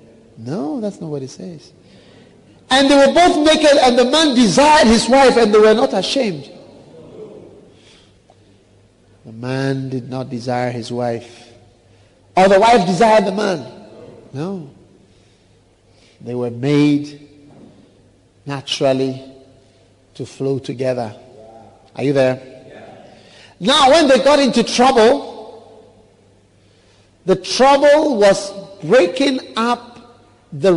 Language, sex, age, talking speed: English, male, 50-69, 115 wpm